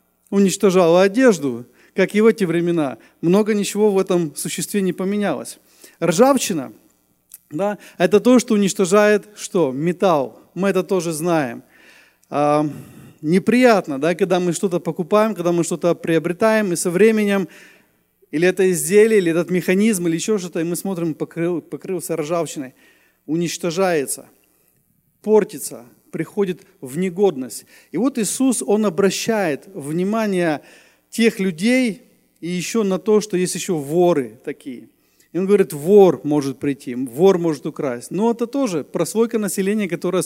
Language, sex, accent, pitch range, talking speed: Russian, male, native, 160-205 Hz, 135 wpm